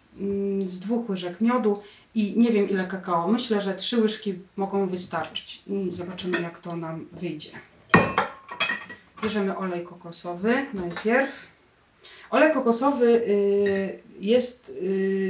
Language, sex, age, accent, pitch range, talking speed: Polish, female, 30-49, native, 185-220 Hz, 105 wpm